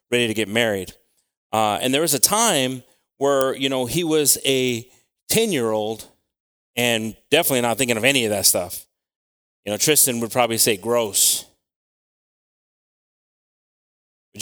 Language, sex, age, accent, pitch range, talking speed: English, male, 30-49, American, 125-180 Hz, 140 wpm